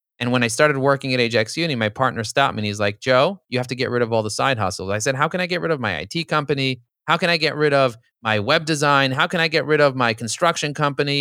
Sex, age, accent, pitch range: male, 30-49, American, 115-140 Hz